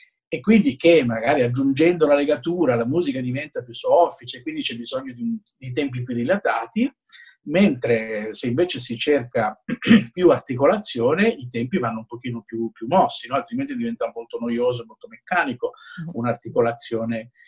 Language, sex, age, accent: Italian, male, 50-69, native